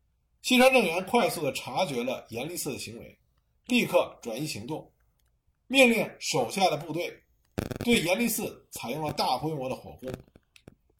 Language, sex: Chinese, male